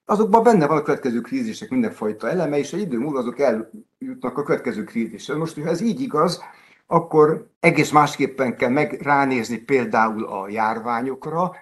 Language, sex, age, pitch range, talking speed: Hungarian, male, 60-79, 115-155 Hz, 155 wpm